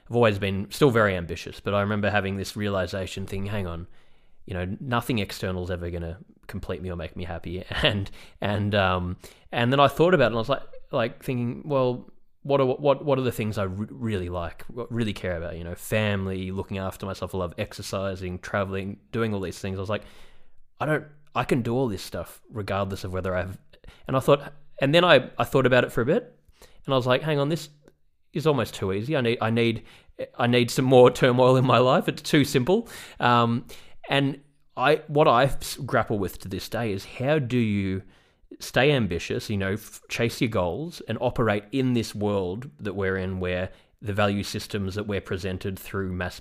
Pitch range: 95-125 Hz